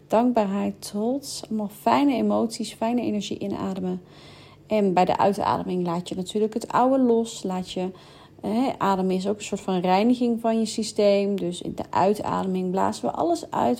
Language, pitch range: Dutch, 165-225 Hz